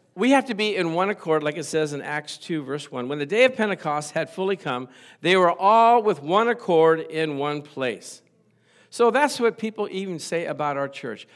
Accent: American